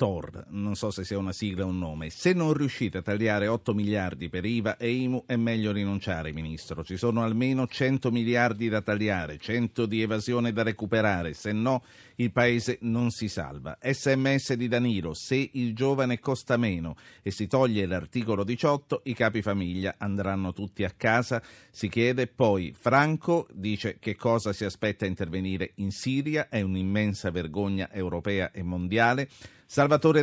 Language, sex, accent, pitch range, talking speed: Italian, male, native, 95-125 Hz, 165 wpm